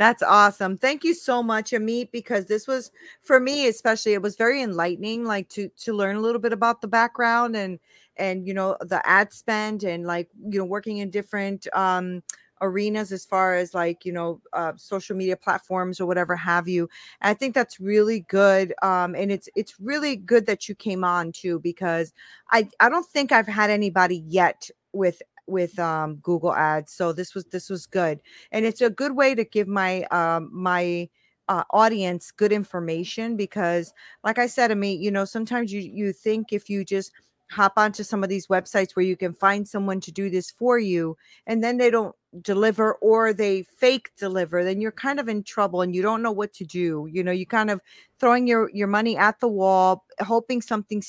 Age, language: 30-49, English